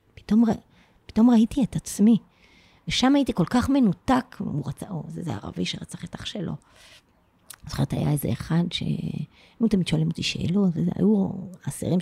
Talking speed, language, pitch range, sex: 170 wpm, Hebrew, 155-200 Hz, female